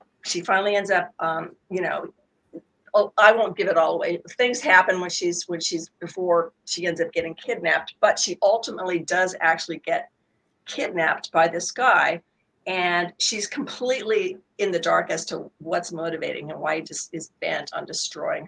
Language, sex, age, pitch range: English, female, 50-69, 170-215 Hz